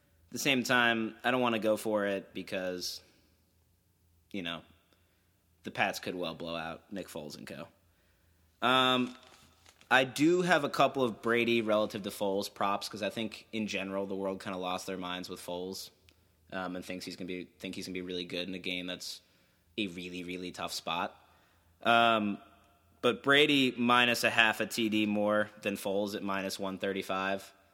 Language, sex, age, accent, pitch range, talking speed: English, male, 20-39, American, 95-115 Hz, 185 wpm